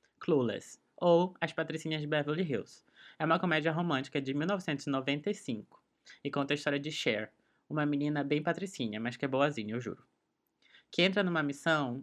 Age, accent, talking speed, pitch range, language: 20-39, Brazilian, 160 wpm, 140-165 Hz, Portuguese